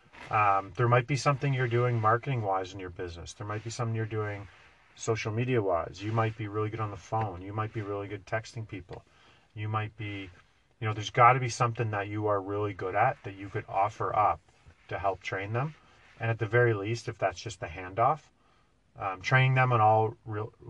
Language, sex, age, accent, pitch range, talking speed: English, male, 30-49, American, 100-120 Hz, 225 wpm